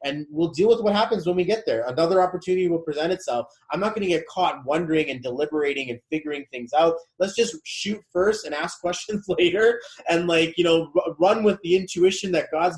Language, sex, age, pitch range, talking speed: English, male, 20-39, 140-170 Hz, 215 wpm